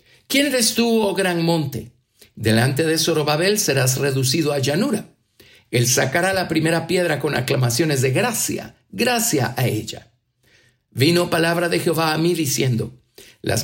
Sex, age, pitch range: male, 50-69, 125-175 Hz